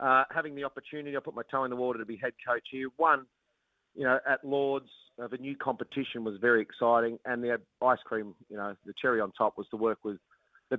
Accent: Australian